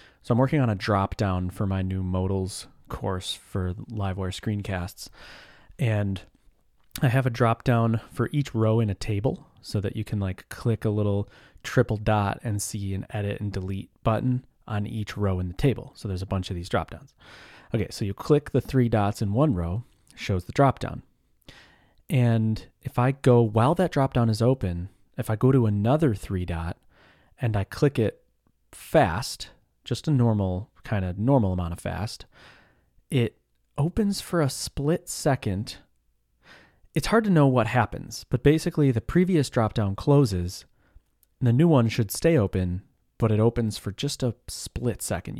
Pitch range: 95-125 Hz